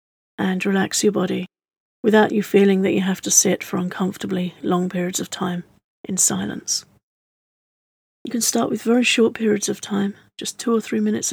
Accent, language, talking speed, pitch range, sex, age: British, English, 180 wpm, 180-205 Hz, female, 40-59